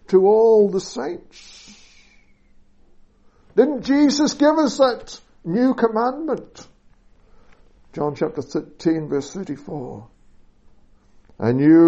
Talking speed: 80 wpm